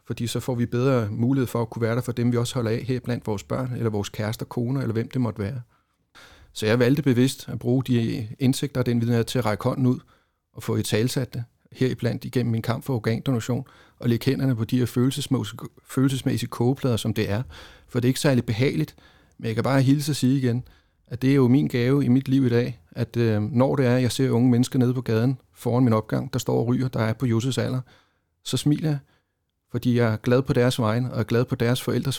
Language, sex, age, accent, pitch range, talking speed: Danish, male, 30-49, native, 115-135 Hz, 250 wpm